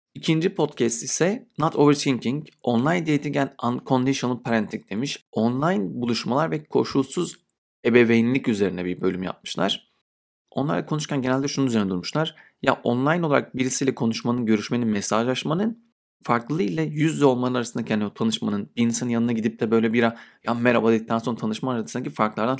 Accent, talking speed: native, 145 wpm